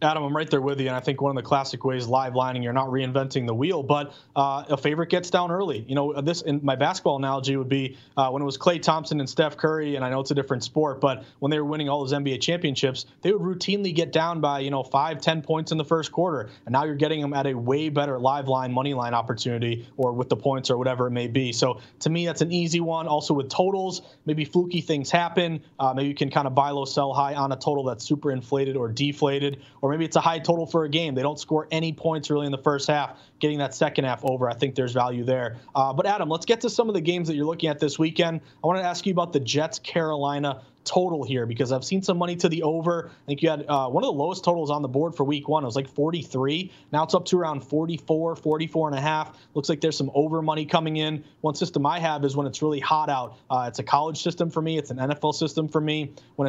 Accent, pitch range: American, 135-160 Hz